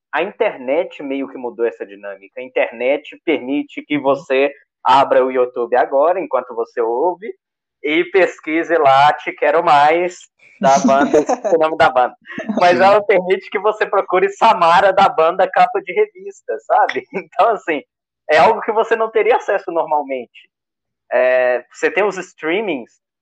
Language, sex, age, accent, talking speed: Portuguese, male, 20-39, Brazilian, 150 wpm